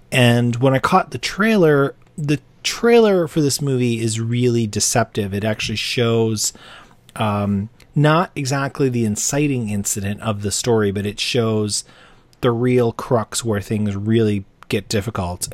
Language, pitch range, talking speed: English, 100-125 Hz, 145 wpm